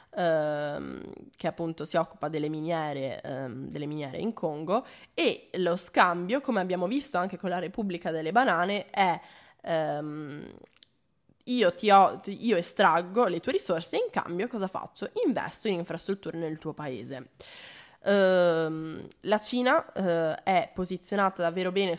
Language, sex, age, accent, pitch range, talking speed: Italian, female, 20-39, native, 160-200 Hz, 125 wpm